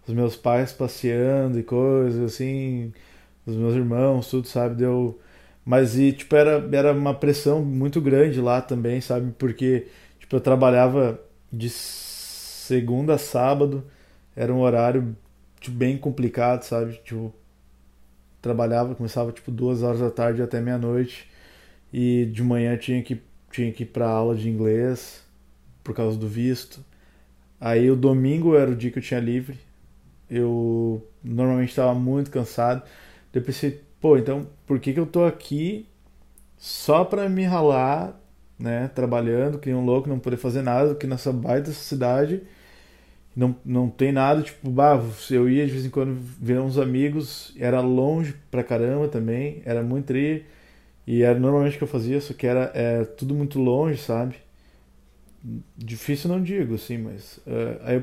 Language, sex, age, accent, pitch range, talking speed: Portuguese, male, 20-39, Brazilian, 115-135 Hz, 160 wpm